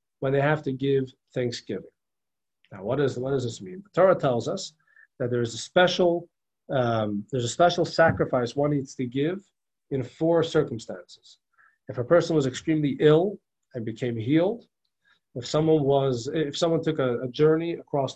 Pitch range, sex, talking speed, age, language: 130-175 Hz, male, 175 wpm, 40-59, English